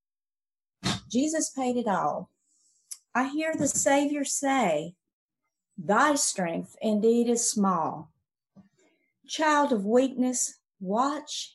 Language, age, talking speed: English, 50-69, 95 wpm